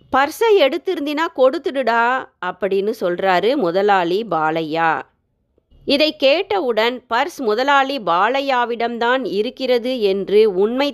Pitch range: 200-280 Hz